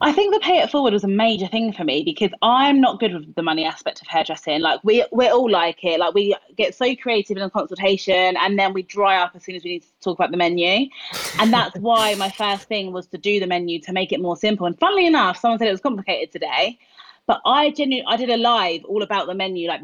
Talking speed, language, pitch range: 270 wpm, English, 180-230 Hz